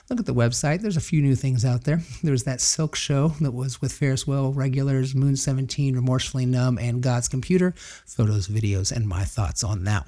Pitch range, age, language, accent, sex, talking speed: 110-135 Hz, 40-59, English, American, male, 210 wpm